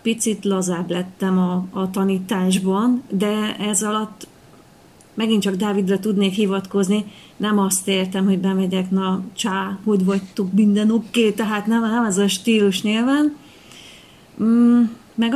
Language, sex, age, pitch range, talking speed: Hungarian, female, 30-49, 195-225 Hz, 135 wpm